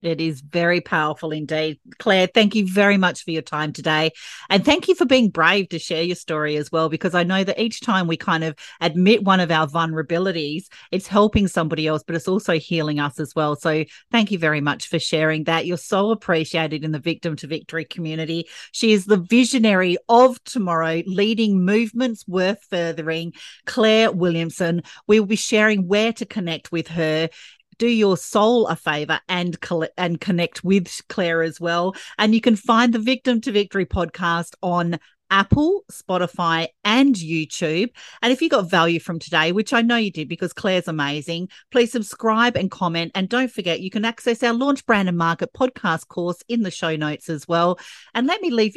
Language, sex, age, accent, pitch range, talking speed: English, female, 40-59, Australian, 165-215 Hz, 195 wpm